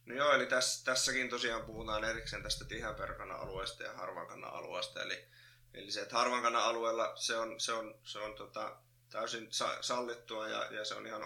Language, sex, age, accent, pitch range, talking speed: Finnish, male, 20-39, native, 110-125 Hz, 180 wpm